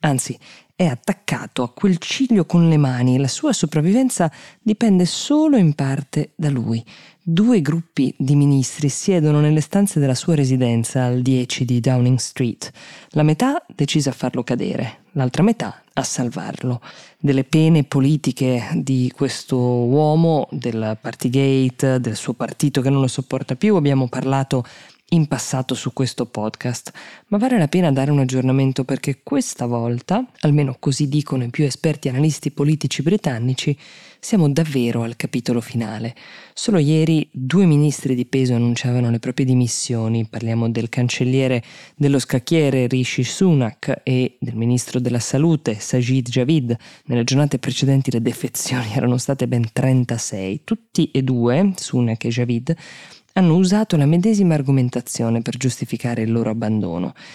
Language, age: Italian, 20-39